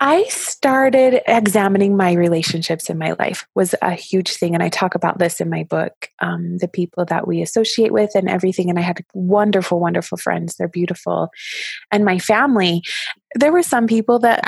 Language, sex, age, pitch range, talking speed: English, female, 20-39, 175-220 Hz, 185 wpm